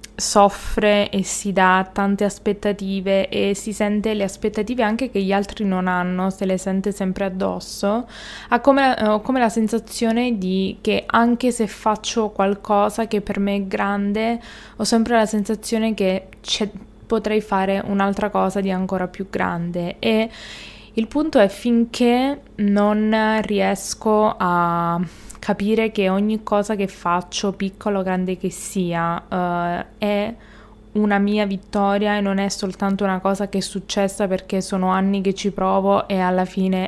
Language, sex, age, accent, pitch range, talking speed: Italian, female, 20-39, native, 190-215 Hz, 150 wpm